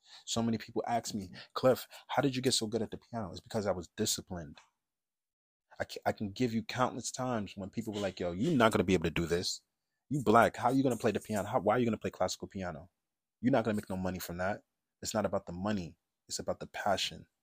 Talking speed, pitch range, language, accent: 260 wpm, 90-110 Hz, English, American